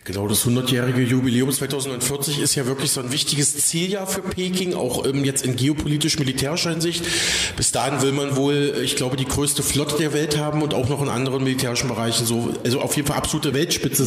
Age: 30-49